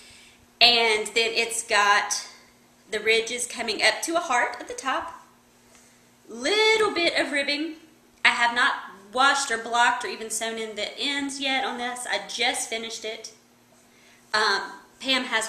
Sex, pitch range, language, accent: female, 220-280 Hz, English, American